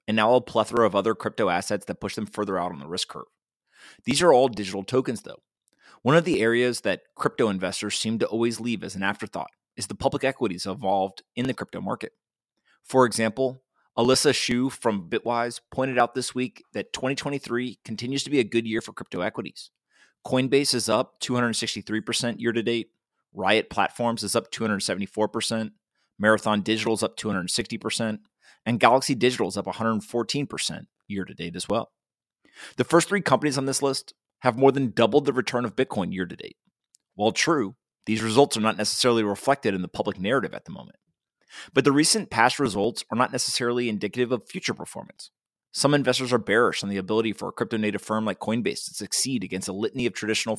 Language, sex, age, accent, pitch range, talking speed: English, male, 30-49, American, 110-130 Hz, 190 wpm